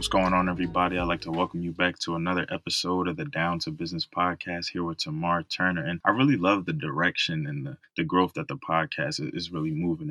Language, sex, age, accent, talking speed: English, male, 20-39, American, 230 wpm